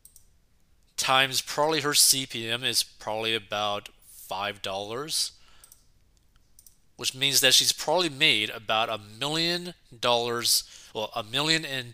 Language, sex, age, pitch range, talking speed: English, male, 30-49, 105-135 Hz, 115 wpm